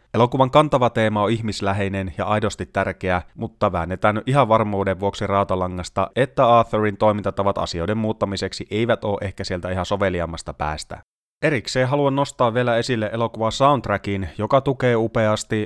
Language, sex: Finnish, male